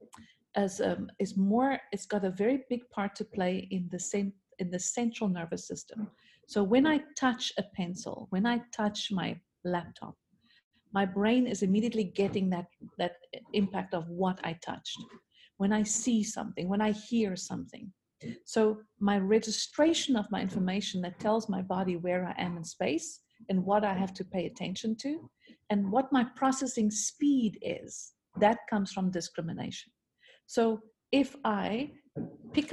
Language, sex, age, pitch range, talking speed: English, female, 50-69, 190-245 Hz, 160 wpm